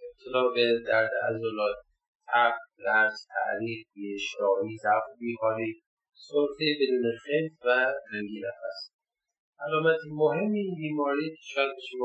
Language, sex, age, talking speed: Persian, male, 30-49, 105 wpm